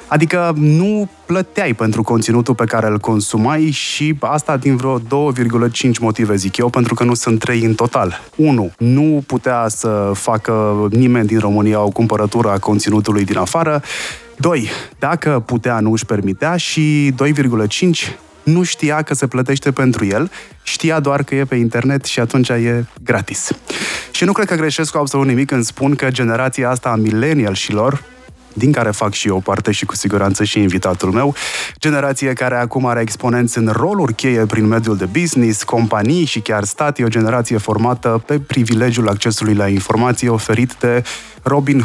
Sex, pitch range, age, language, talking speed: male, 110-140 Hz, 20-39, Romanian, 170 wpm